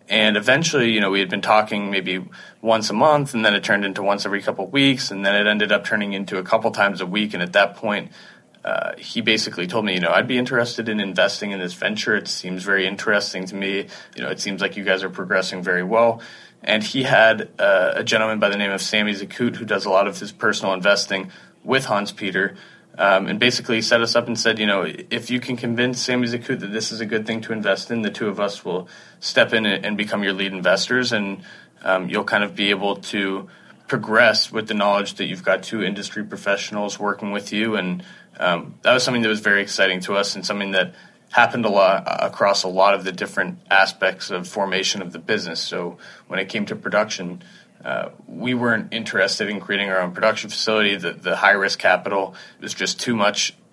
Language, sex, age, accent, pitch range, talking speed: English, male, 20-39, American, 100-115 Hz, 230 wpm